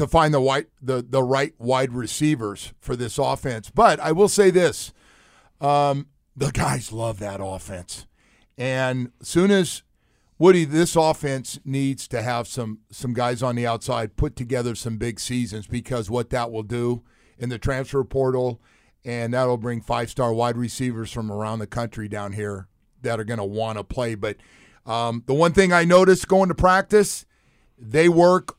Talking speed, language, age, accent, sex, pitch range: 180 wpm, English, 50-69, American, male, 120-160 Hz